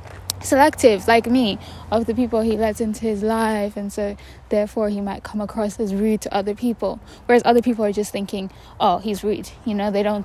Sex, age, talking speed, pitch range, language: female, 10-29, 210 wpm, 205-245 Hz, English